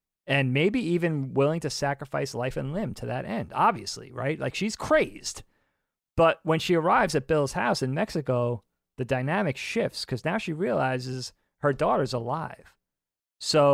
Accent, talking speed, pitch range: American, 160 wpm, 120-155 Hz